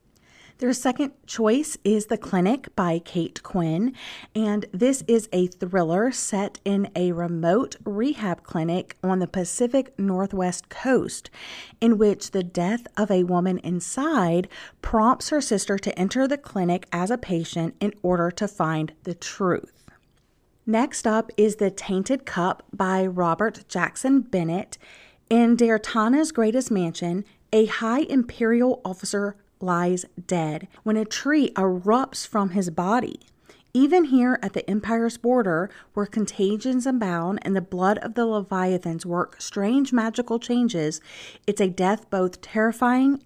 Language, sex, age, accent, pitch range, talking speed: English, female, 40-59, American, 180-235 Hz, 140 wpm